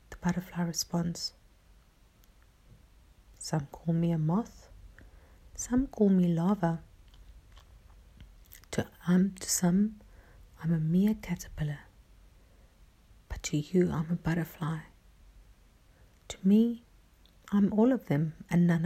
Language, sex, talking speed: English, female, 105 wpm